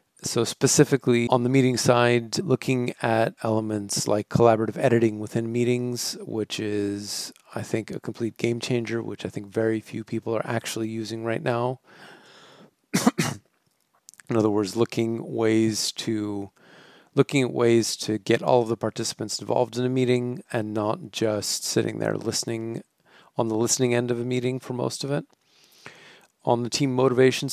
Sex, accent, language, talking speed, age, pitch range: male, American, English, 160 wpm, 40-59, 110-125 Hz